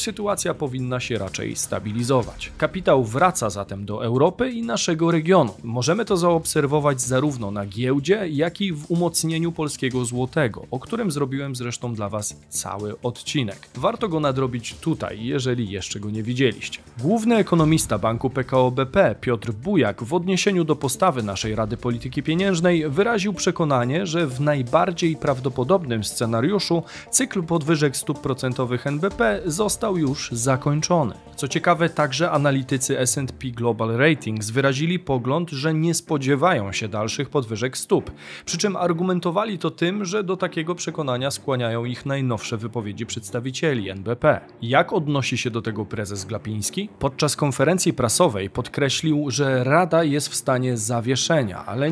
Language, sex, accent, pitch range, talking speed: Polish, male, native, 120-170 Hz, 140 wpm